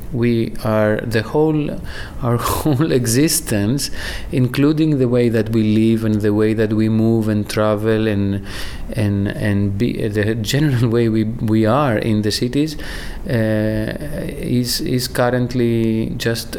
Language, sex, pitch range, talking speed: Ukrainian, male, 105-130 Hz, 140 wpm